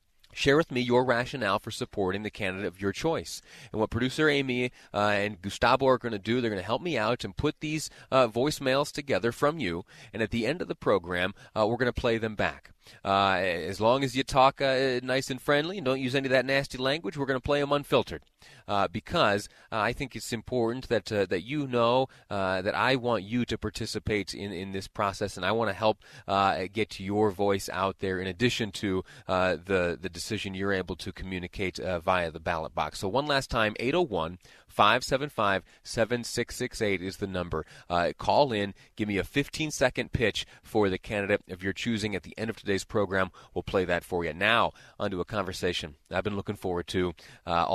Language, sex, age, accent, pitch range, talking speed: English, male, 30-49, American, 100-125 Hz, 215 wpm